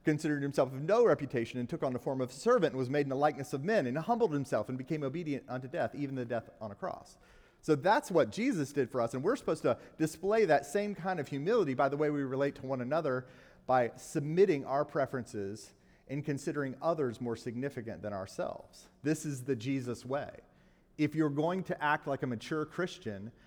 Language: English